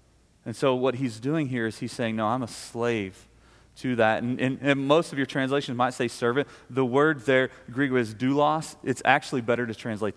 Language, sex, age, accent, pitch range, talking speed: English, male, 30-49, American, 110-140 Hz, 210 wpm